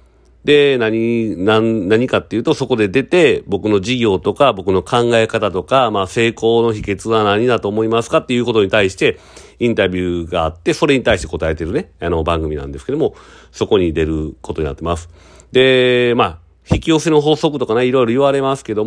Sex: male